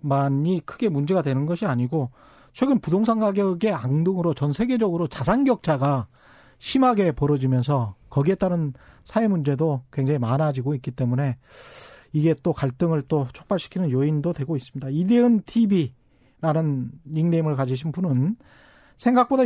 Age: 40-59